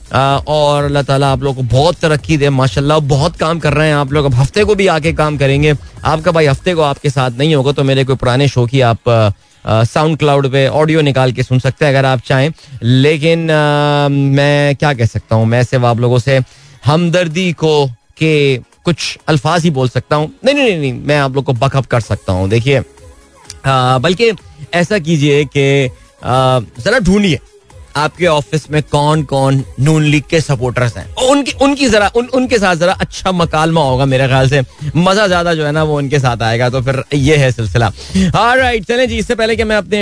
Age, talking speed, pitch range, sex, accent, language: 30-49, 175 wpm, 130-160 Hz, male, native, Hindi